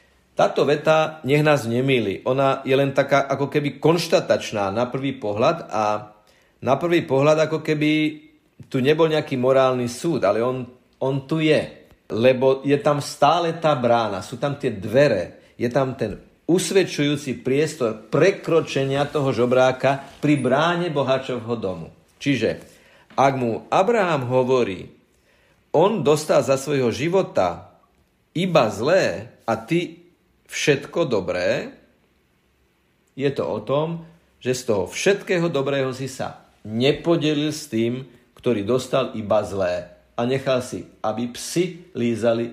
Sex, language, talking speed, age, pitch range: male, Slovak, 130 wpm, 50-69, 115-150 Hz